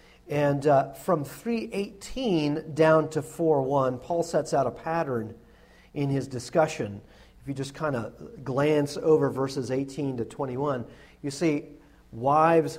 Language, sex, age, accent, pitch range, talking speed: English, male, 40-59, American, 130-170 Hz, 135 wpm